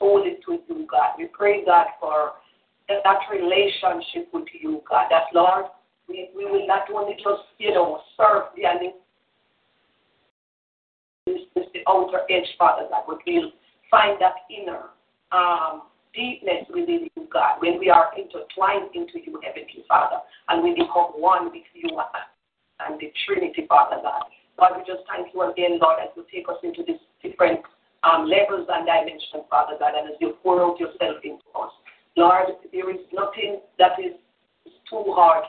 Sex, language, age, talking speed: female, English, 40-59, 170 wpm